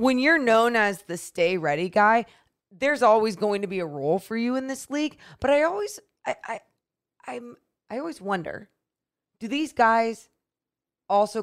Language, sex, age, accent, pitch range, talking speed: English, female, 20-39, American, 185-250 Hz, 175 wpm